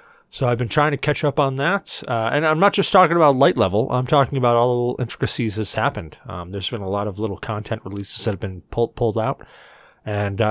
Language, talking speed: English, 245 wpm